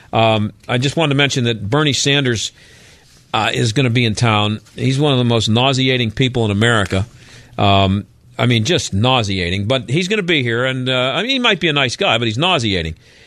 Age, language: 50-69, English